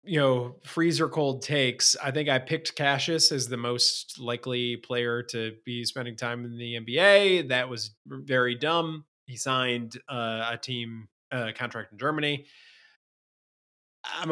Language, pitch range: English, 120-160 Hz